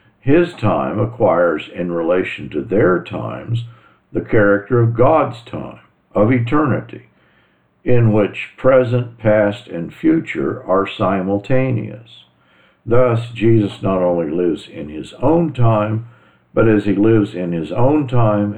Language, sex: English, male